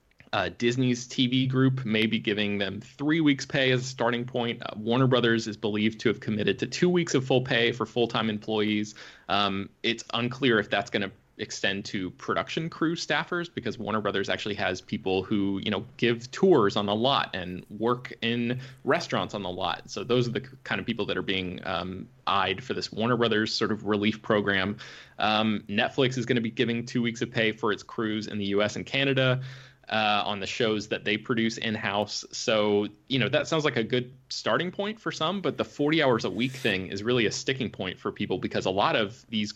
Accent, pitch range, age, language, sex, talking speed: American, 105-130 Hz, 20-39, English, male, 220 wpm